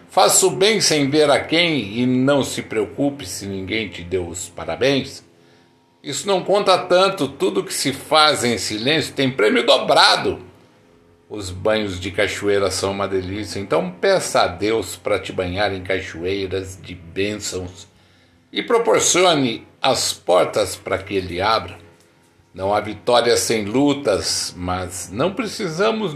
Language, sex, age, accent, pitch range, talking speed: Portuguese, male, 60-79, Brazilian, 95-140 Hz, 145 wpm